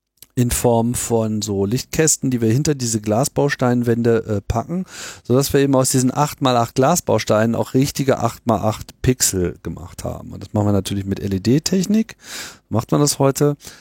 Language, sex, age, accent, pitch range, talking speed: German, male, 50-69, German, 100-125 Hz, 160 wpm